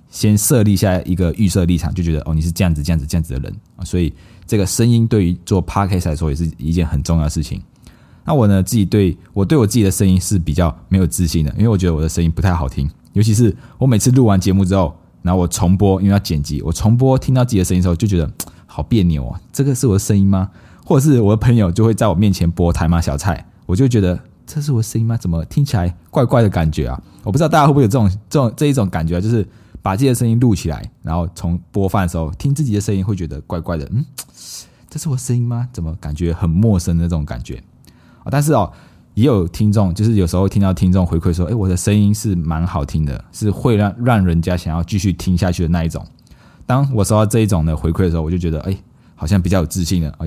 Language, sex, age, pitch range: Chinese, male, 20-39, 85-105 Hz